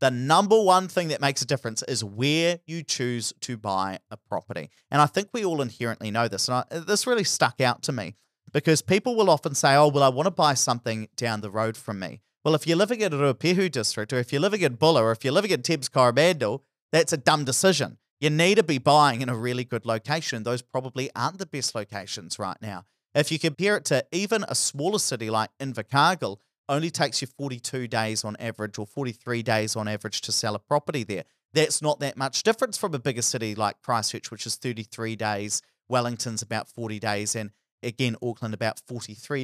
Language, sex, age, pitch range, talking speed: English, male, 40-59, 110-155 Hz, 215 wpm